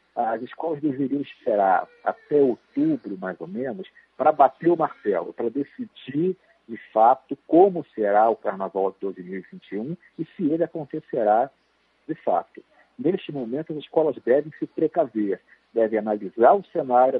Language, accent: Portuguese, Brazilian